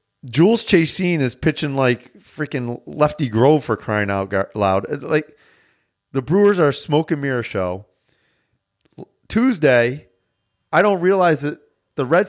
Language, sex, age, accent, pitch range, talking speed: English, male, 30-49, American, 115-155 Hz, 130 wpm